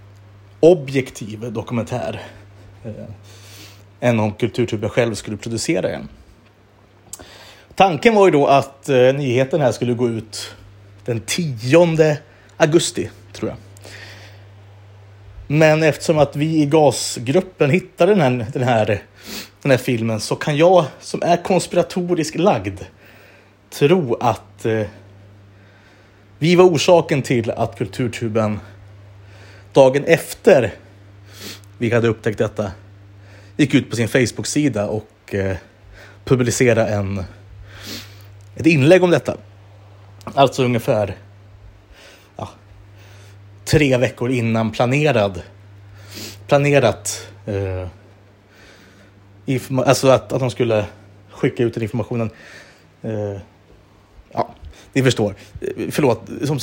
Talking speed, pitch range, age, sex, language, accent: 100 wpm, 100-130 Hz, 30-49, male, Swedish, native